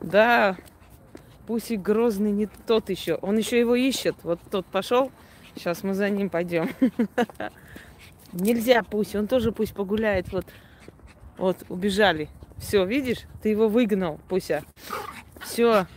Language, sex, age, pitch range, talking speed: Russian, female, 20-39, 170-225 Hz, 125 wpm